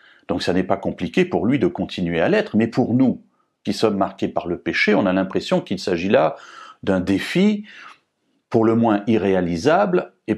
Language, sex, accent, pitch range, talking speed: French, male, French, 95-140 Hz, 190 wpm